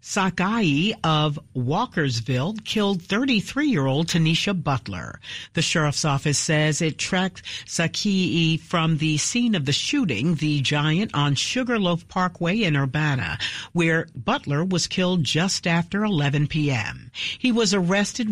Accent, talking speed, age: American, 125 wpm, 50-69